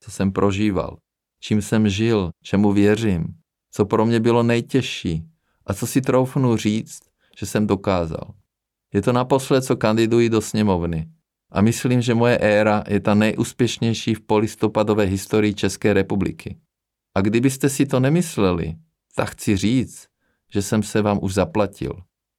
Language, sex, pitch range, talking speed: Czech, male, 100-120 Hz, 145 wpm